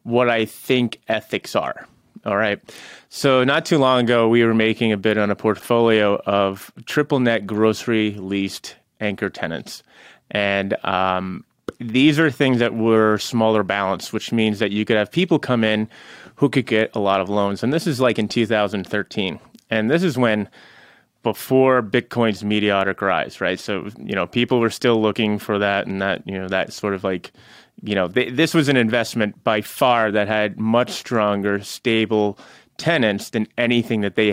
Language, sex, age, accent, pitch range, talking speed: English, male, 30-49, American, 100-120 Hz, 180 wpm